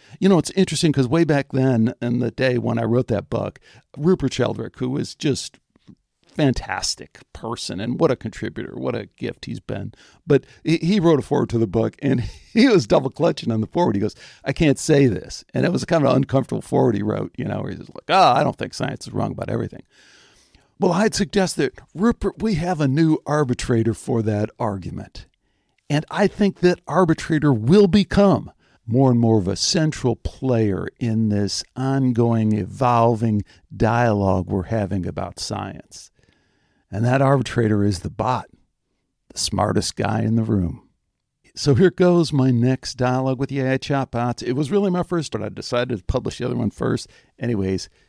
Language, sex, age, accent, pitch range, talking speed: English, male, 60-79, American, 110-150 Hz, 190 wpm